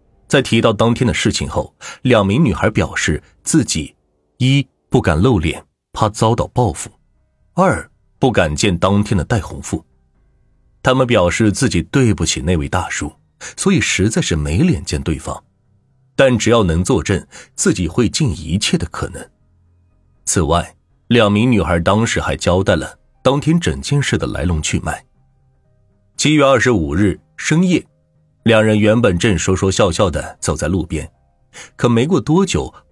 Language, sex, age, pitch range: Chinese, male, 30-49, 85-120 Hz